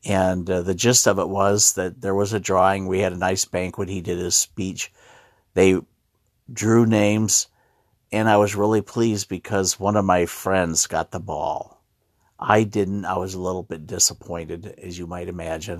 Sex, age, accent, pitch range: male, 50-69, American, 90-100 Hz